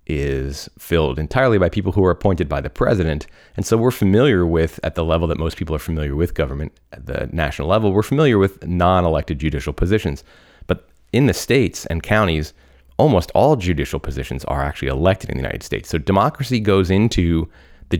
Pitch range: 75-100 Hz